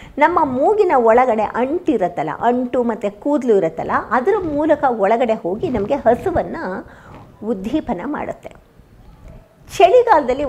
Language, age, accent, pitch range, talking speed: Kannada, 50-69, native, 225-315 Hz, 95 wpm